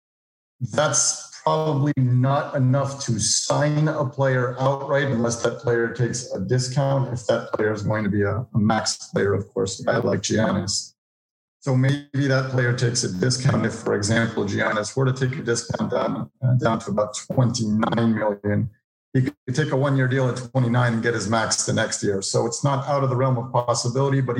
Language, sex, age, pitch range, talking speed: English, male, 50-69, 115-135 Hz, 185 wpm